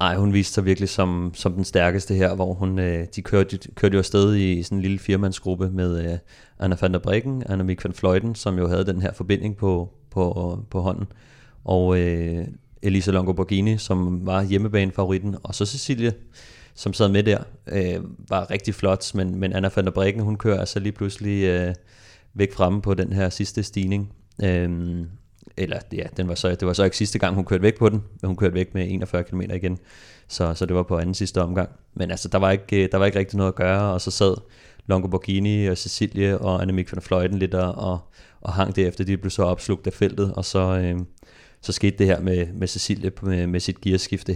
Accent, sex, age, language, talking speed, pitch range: native, male, 30-49, Danish, 220 wpm, 90-100 Hz